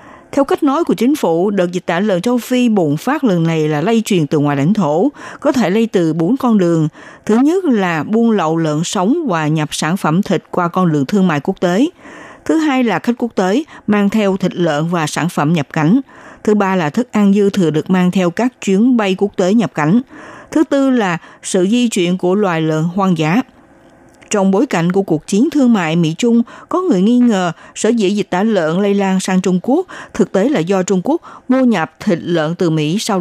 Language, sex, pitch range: Vietnamese, female, 170-235 Hz